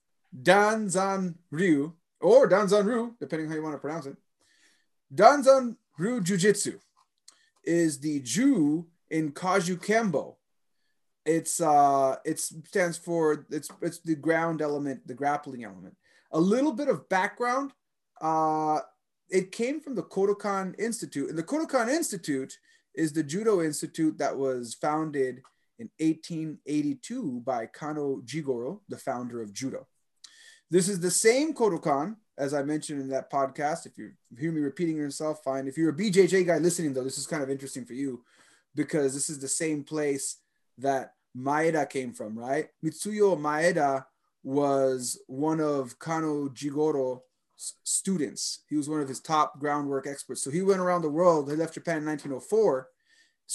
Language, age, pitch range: English, 30-49, 140-190 Hz